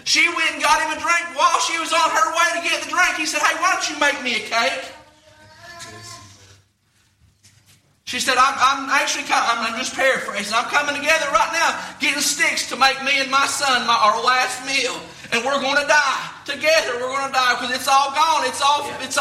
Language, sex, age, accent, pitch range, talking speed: English, male, 30-49, American, 270-320 Hz, 210 wpm